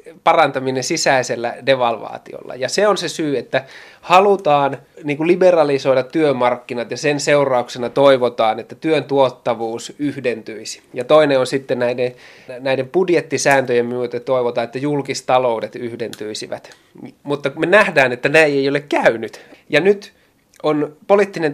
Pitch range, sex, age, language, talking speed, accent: 125-155 Hz, male, 20-39, Finnish, 125 wpm, native